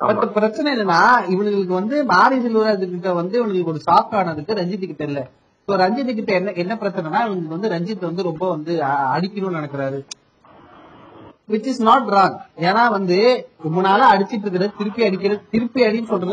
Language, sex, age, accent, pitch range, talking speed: Tamil, male, 30-49, native, 140-205 Hz, 90 wpm